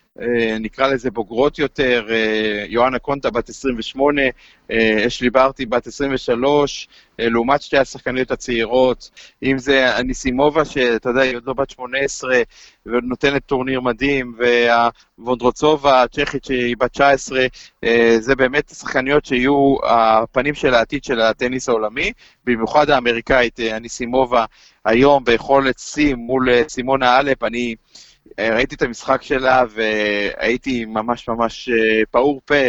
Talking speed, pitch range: 125 wpm, 115-135 Hz